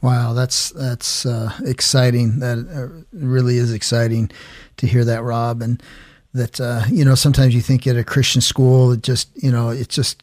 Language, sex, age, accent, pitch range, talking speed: English, male, 40-59, American, 115-130 Hz, 190 wpm